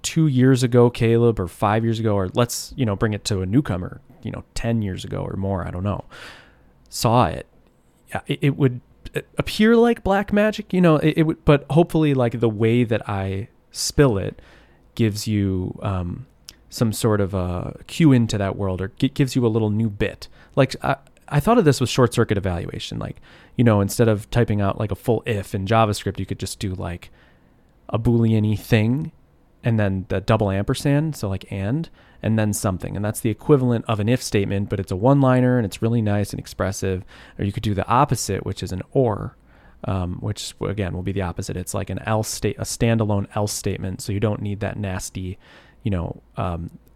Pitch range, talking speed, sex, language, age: 100-125 Hz, 210 wpm, male, English, 20-39